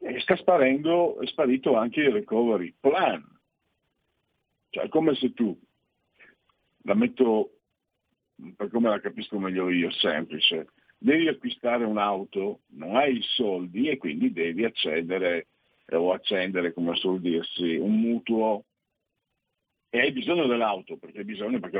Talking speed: 135 wpm